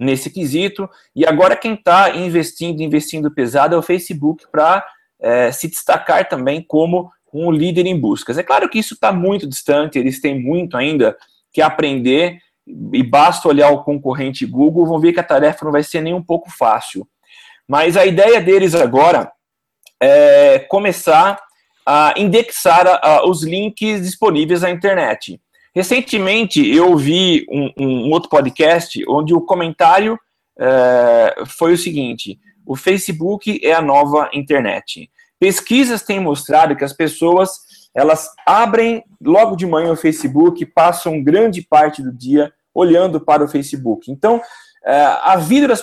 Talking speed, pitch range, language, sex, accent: 145 wpm, 150-200 Hz, Portuguese, male, Brazilian